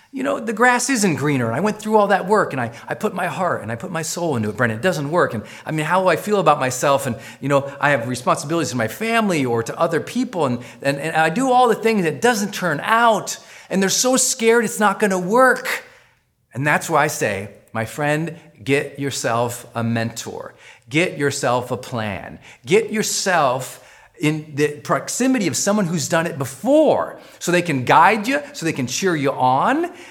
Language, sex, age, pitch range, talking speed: English, male, 40-59, 140-210 Hz, 220 wpm